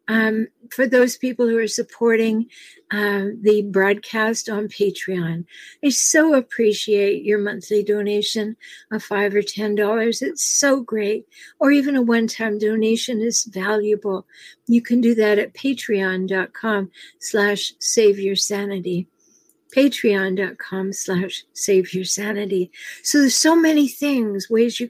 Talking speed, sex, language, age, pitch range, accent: 120 wpm, female, English, 60-79, 210-280 Hz, American